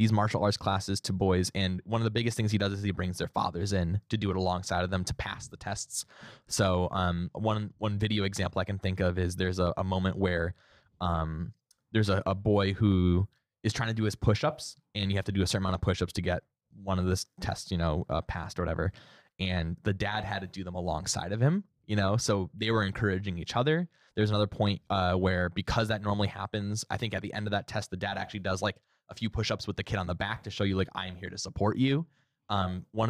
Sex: male